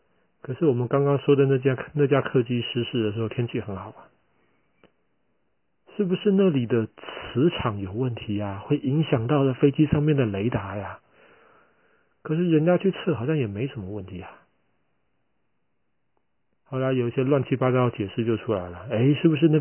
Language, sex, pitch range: Chinese, male, 110-140 Hz